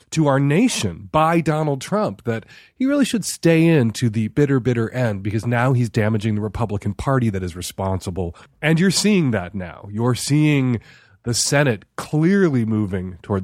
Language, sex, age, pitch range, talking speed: English, male, 30-49, 105-155 Hz, 175 wpm